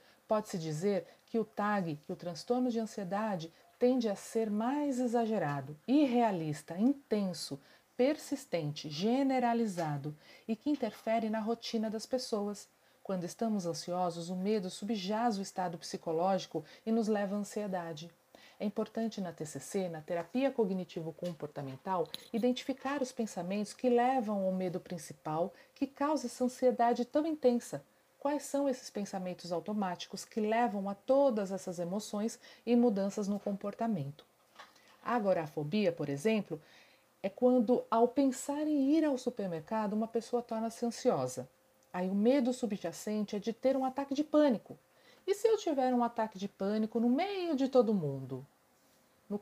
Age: 40-59